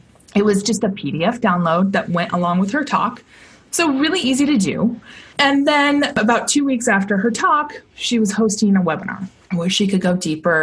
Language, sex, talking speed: English, female, 200 wpm